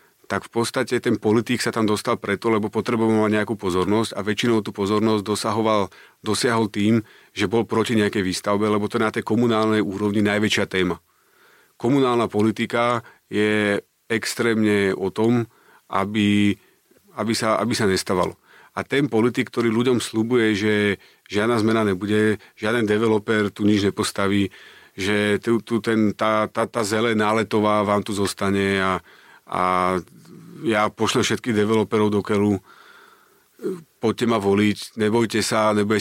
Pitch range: 100-115 Hz